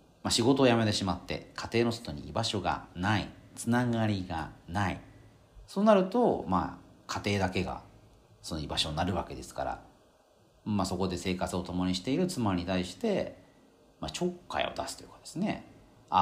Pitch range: 90-135 Hz